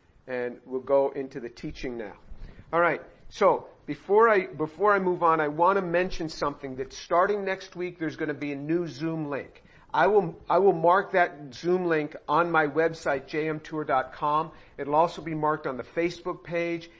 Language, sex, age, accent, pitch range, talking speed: English, male, 50-69, American, 140-170 Hz, 185 wpm